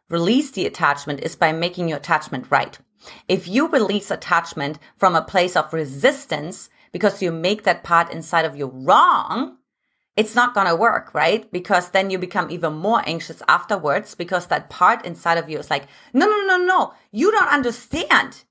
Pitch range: 165-235 Hz